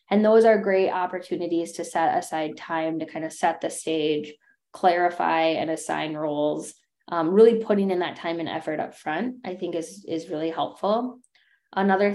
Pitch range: 160-195 Hz